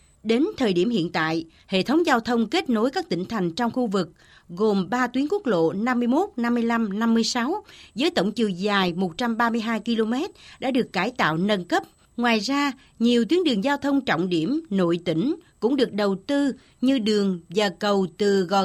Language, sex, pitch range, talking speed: Vietnamese, female, 195-270 Hz, 220 wpm